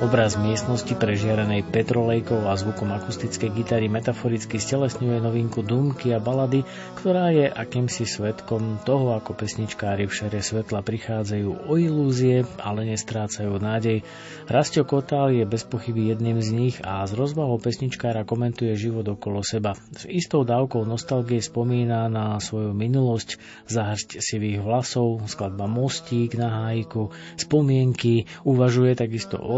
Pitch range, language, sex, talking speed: 110-125 Hz, Slovak, male, 130 wpm